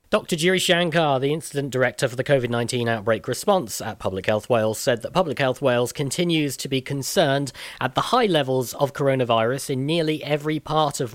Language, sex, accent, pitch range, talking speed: English, male, British, 120-150 Hz, 190 wpm